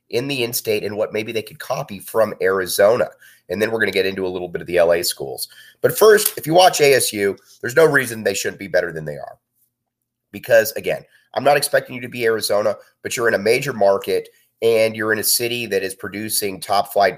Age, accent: 30-49, American